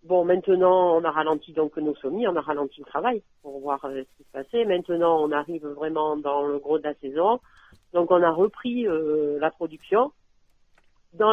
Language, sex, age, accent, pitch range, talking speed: French, female, 50-69, French, 145-175 Hz, 200 wpm